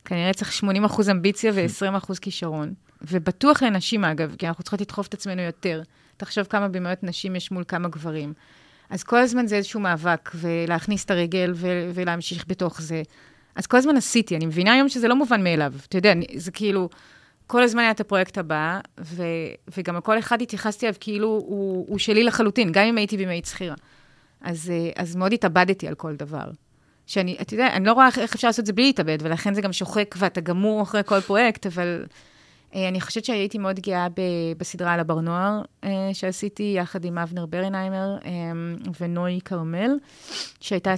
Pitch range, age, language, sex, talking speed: 175-205 Hz, 30-49, Hebrew, female, 185 wpm